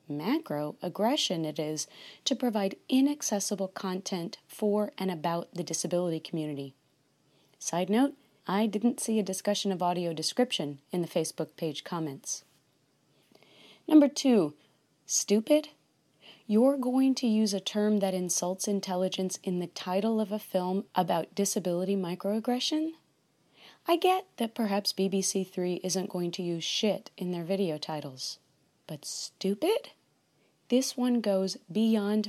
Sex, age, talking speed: female, 30-49, 130 wpm